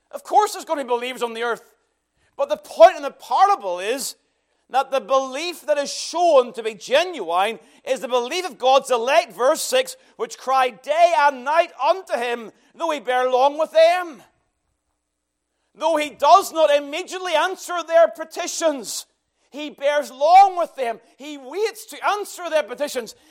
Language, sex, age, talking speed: English, male, 40-59, 170 wpm